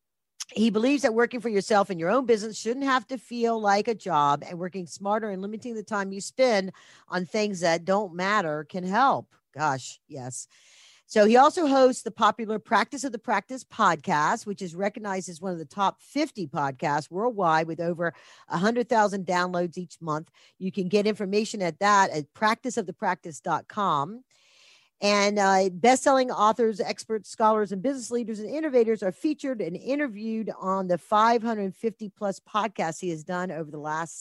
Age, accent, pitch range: 50-69, American, 185-240 Hz